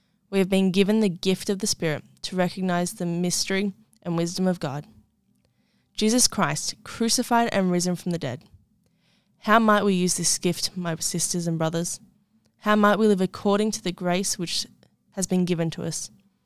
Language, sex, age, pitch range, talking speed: English, female, 10-29, 170-200 Hz, 180 wpm